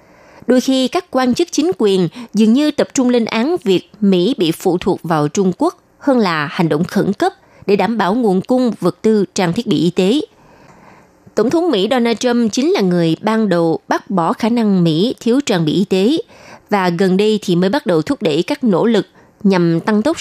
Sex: female